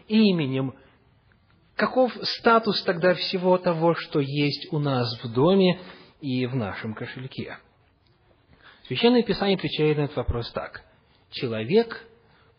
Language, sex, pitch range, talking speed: English, male, 135-195 Hz, 115 wpm